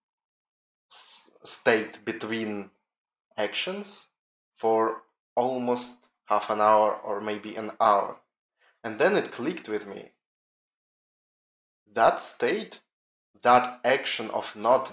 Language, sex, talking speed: English, male, 95 wpm